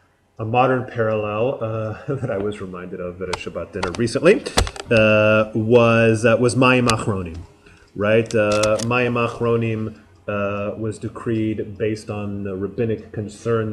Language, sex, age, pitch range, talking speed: English, male, 30-49, 100-120 Hz, 140 wpm